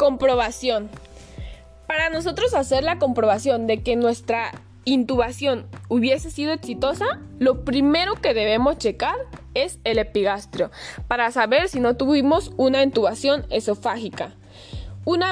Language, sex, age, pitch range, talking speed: Spanish, female, 10-29, 215-290 Hz, 120 wpm